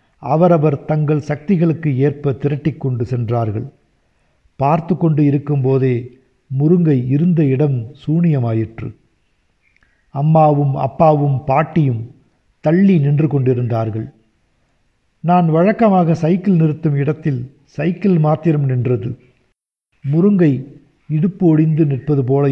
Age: 50-69